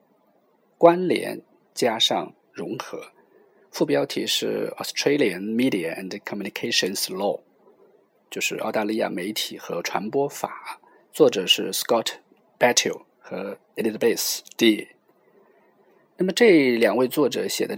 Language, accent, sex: Chinese, native, male